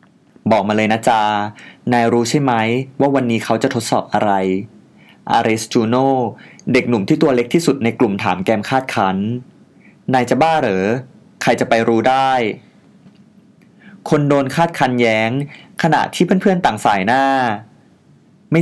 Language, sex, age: Thai, male, 20-39